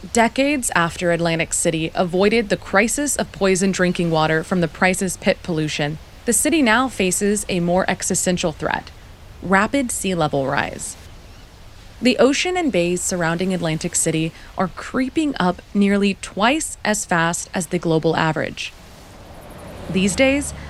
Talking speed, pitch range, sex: 140 wpm, 165-230 Hz, female